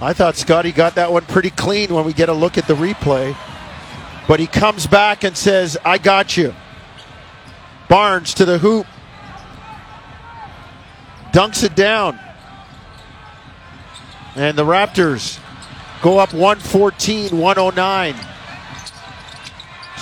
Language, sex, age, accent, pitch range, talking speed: English, male, 50-69, American, 155-195 Hz, 115 wpm